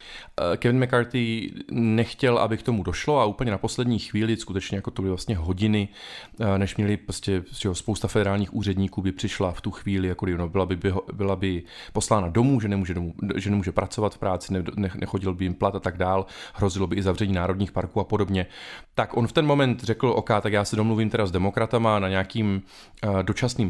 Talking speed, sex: 200 wpm, male